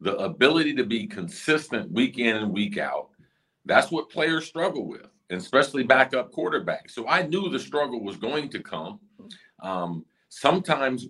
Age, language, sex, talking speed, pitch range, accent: 50-69, English, male, 160 wpm, 105-135 Hz, American